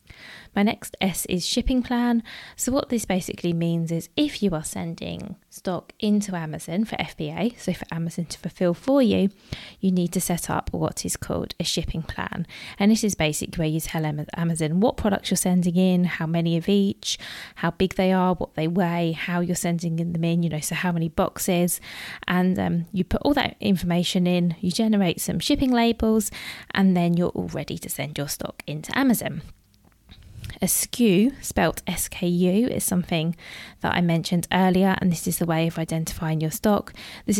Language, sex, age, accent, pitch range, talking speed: English, female, 20-39, British, 165-200 Hz, 190 wpm